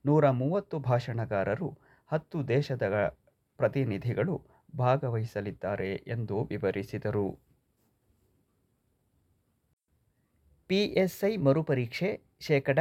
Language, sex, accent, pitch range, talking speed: Kannada, male, native, 115-145 Hz, 55 wpm